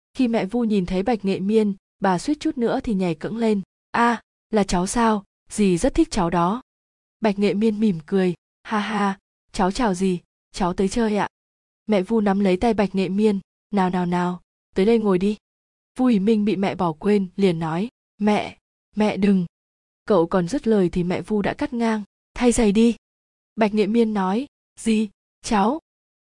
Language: Vietnamese